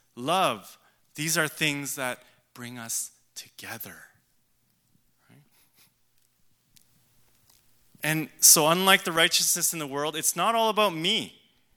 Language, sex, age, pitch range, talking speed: English, male, 20-39, 140-185 Hz, 105 wpm